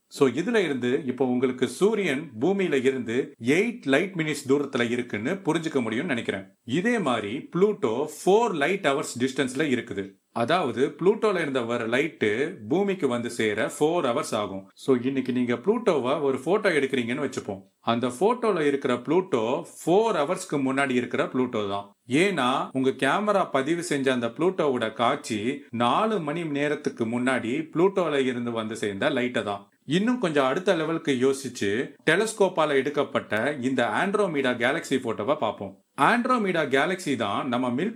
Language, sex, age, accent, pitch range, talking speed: Tamil, male, 40-59, native, 125-185 Hz, 55 wpm